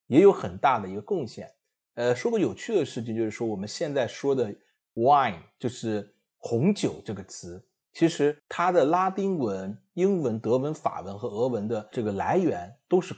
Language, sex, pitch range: Chinese, male, 100-145 Hz